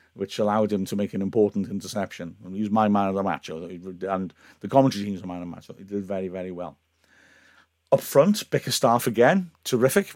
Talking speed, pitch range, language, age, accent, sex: 200 wpm, 100-125 Hz, English, 50-69, British, male